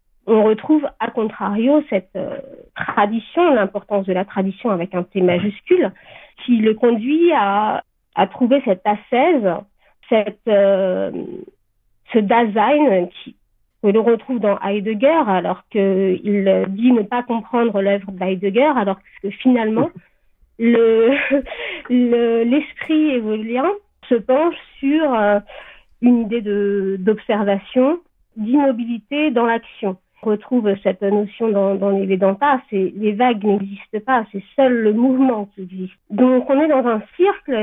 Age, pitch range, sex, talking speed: 40-59, 200-260 Hz, female, 130 wpm